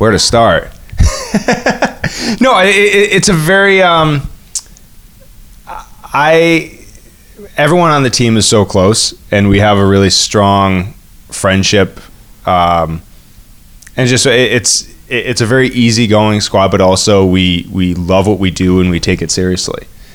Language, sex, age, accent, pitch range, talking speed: English, male, 20-39, American, 90-110 Hz, 145 wpm